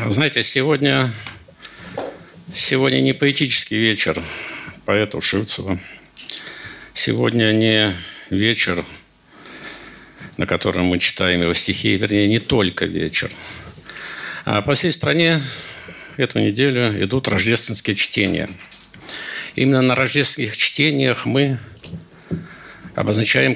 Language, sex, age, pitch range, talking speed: Russian, male, 60-79, 100-130 Hz, 90 wpm